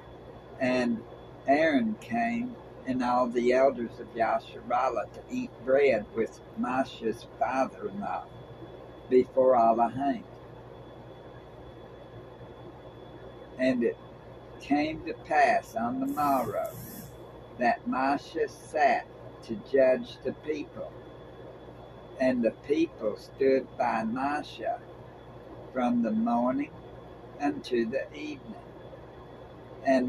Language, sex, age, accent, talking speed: English, male, 60-79, American, 95 wpm